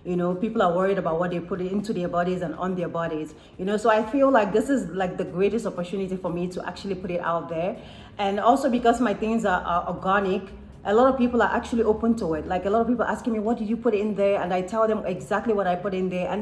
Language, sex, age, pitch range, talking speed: English, female, 30-49, 180-230 Hz, 280 wpm